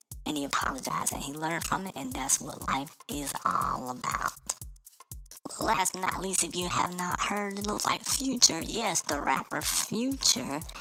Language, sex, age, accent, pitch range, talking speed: English, male, 20-39, American, 165-215 Hz, 180 wpm